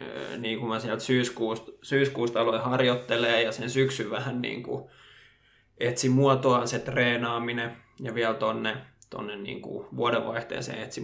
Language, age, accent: Finnish, 20-39, native